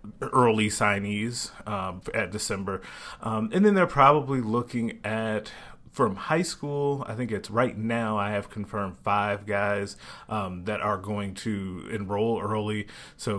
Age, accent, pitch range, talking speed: 30-49, American, 95-115 Hz, 150 wpm